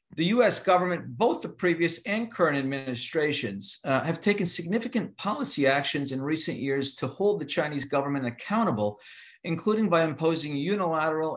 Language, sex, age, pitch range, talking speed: English, male, 50-69, 125-165 Hz, 150 wpm